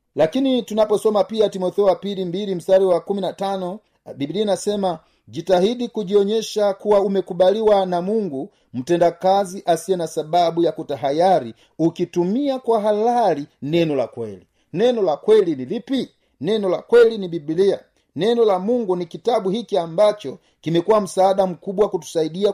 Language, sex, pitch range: Swahili, male, 165-205 Hz